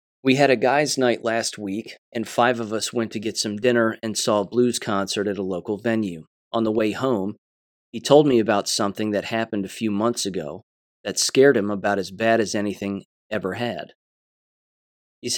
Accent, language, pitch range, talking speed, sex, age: American, English, 105-125 Hz, 200 wpm, male, 30-49